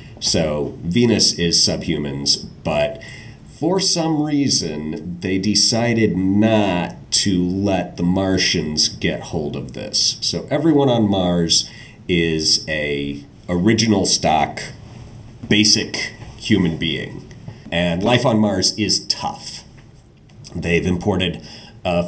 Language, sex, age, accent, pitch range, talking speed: English, male, 30-49, American, 80-105 Hz, 105 wpm